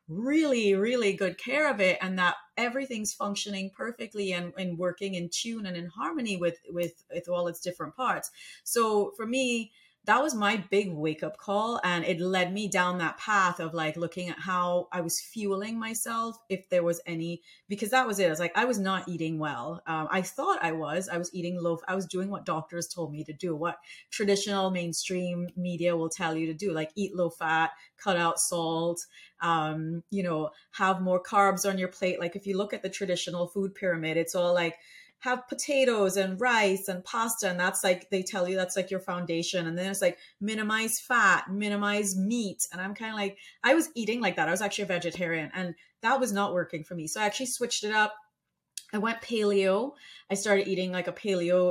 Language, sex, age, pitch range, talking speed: English, female, 30-49, 175-205 Hz, 215 wpm